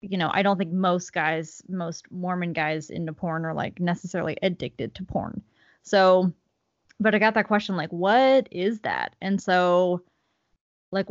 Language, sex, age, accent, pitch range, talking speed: English, female, 20-39, American, 175-205 Hz, 165 wpm